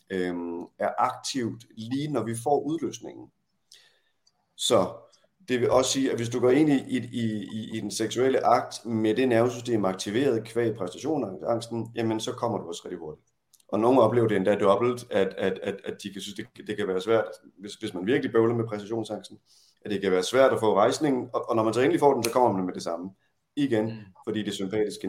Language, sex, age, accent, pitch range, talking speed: Danish, male, 30-49, native, 100-125 Hz, 210 wpm